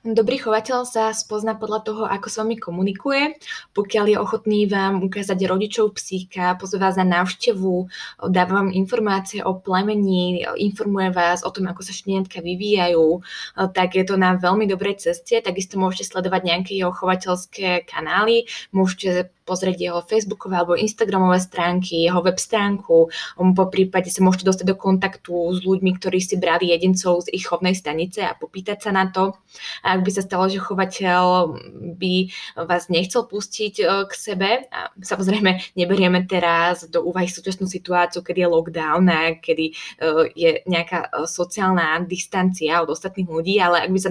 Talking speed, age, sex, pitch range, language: 160 wpm, 20-39, female, 180-200 Hz, Slovak